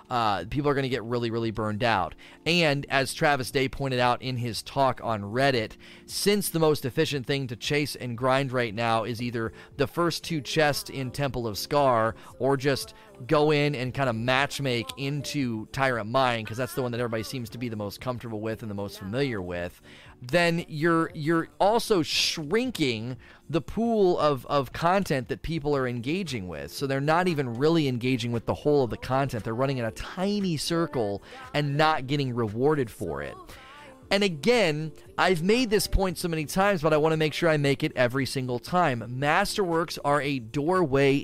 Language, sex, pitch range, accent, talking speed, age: English, male, 120-160 Hz, American, 195 wpm, 30-49